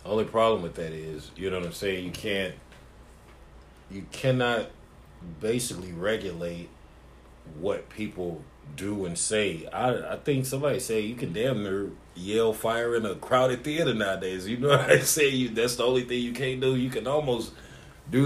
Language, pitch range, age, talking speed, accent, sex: English, 100-135 Hz, 30-49, 175 wpm, American, male